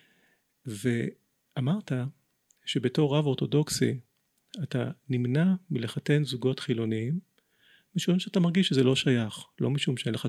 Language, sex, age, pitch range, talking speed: Hebrew, male, 40-59, 120-155 Hz, 110 wpm